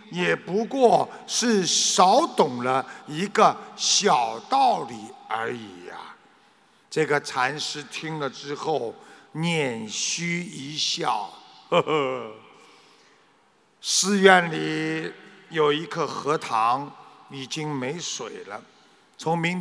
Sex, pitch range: male, 150-215 Hz